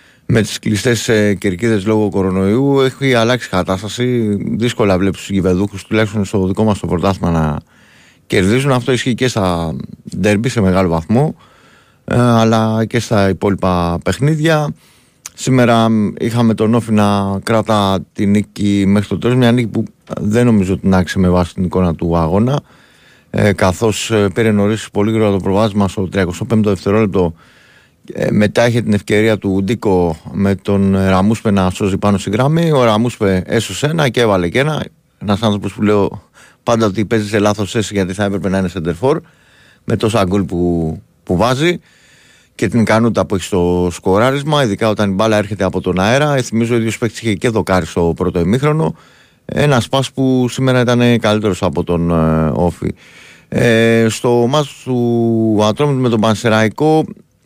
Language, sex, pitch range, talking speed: Greek, male, 95-120 Hz, 160 wpm